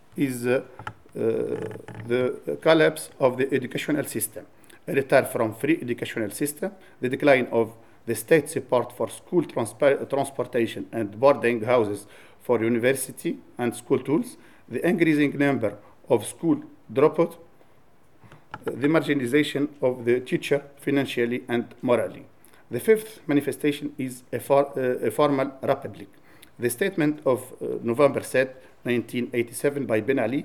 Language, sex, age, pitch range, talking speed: English, male, 50-69, 120-145 Hz, 130 wpm